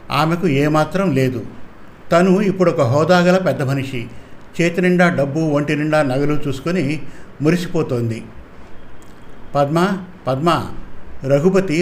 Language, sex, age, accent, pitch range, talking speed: Telugu, male, 50-69, native, 140-170 Hz, 100 wpm